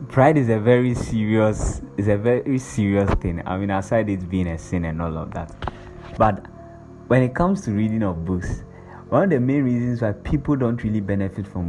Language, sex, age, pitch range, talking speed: English, male, 20-39, 95-115 Hz, 205 wpm